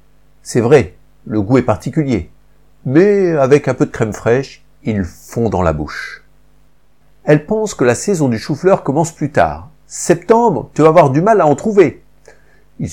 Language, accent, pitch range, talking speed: French, French, 105-150 Hz, 175 wpm